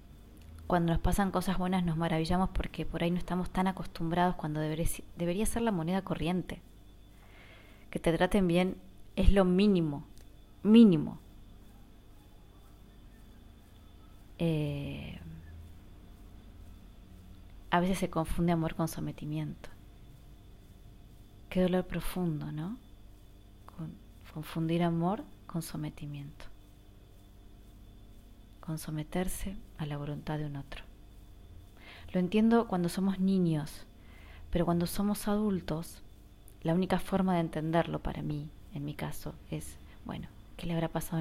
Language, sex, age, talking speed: Spanish, female, 20-39, 110 wpm